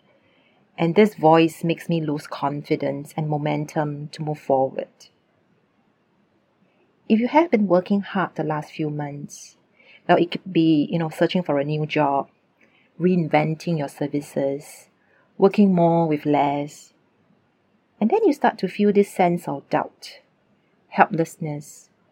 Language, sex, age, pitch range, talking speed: English, female, 40-59, 150-195 Hz, 135 wpm